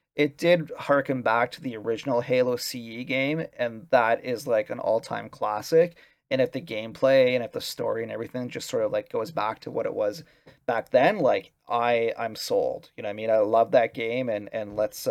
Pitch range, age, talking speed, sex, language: 120-160 Hz, 30-49, 215 wpm, male, English